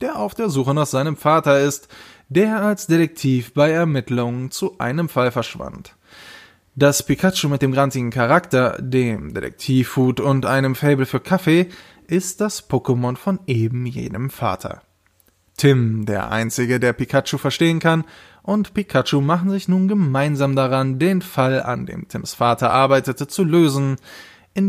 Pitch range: 125-170 Hz